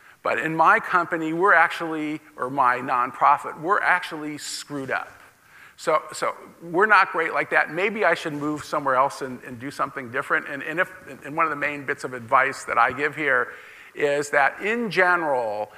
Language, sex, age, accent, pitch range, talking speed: English, male, 50-69, American, 140-170 Hz, 190 wpm